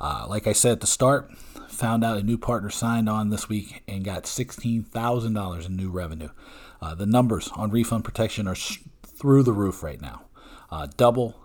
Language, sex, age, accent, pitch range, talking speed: English, male, 40-59, American, 95-120 Hz, 190 wpm